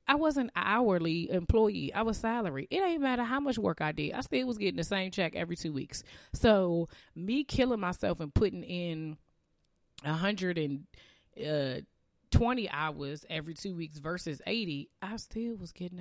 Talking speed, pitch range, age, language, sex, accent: 175 wpm, 140-175 Hz, 20-39, English, female, American